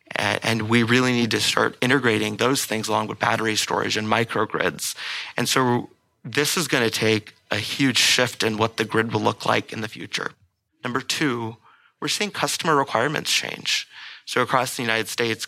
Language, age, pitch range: English, 30-49, 110-125 Hz